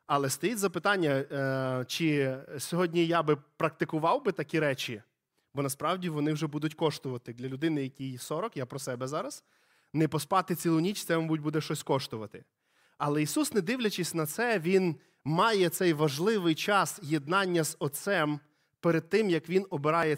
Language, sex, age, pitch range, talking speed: Ukrainian, male, 20-39, 150-190 Hz, 160 wpm